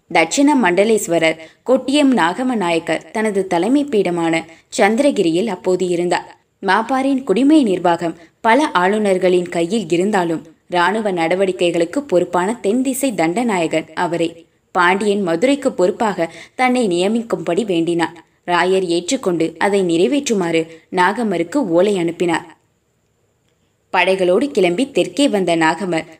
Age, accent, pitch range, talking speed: 20-39, native, 170-220 Hz, 100 wpm